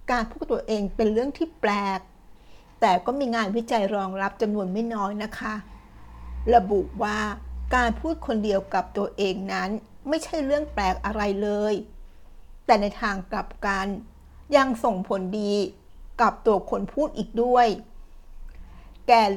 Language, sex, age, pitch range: Thai, female, 60-79, 195-235 Hz